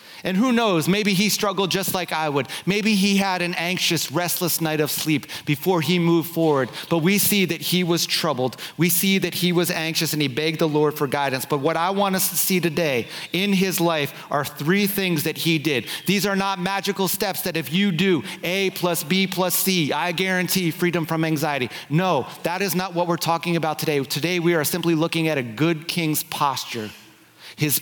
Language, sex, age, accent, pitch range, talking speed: English, male, 30-49, American, 150-180 Hz, 215 wpm